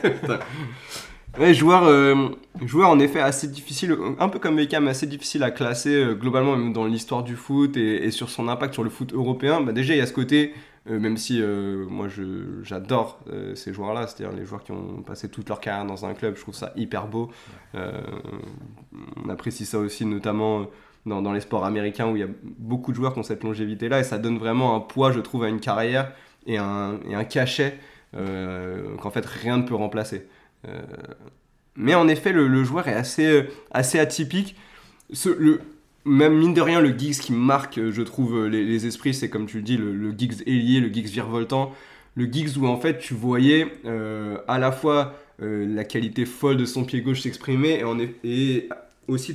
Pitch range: 110-140 Hz